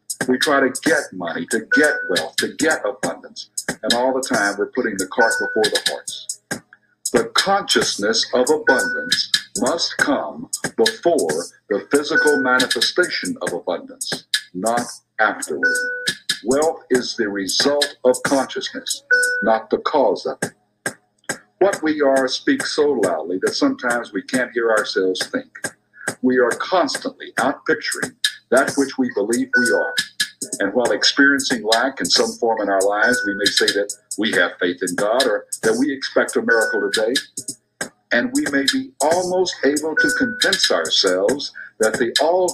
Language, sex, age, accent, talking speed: English, male, 60-79, American, 150 wpm